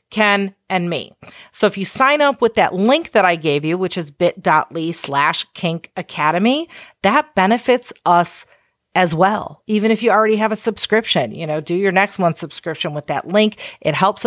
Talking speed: 185 wpm